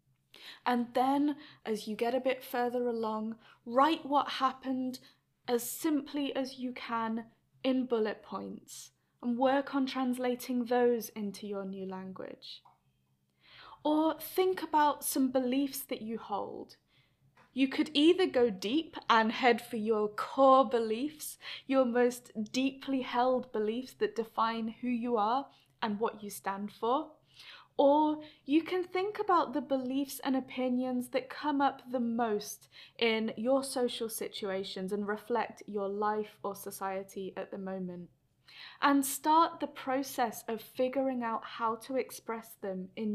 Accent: British